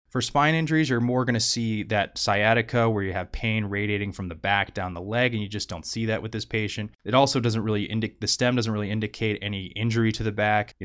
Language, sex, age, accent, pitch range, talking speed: English, male, 20-39, American, 95-115 Hz, 255 wpm